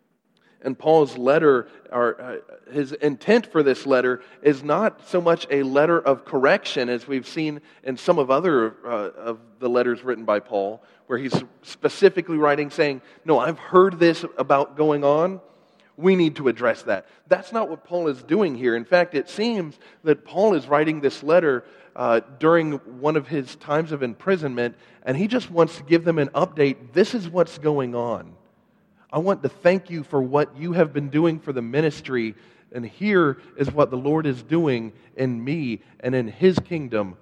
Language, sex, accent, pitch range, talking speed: English, male, American, 130-170 Hz, 185 wpm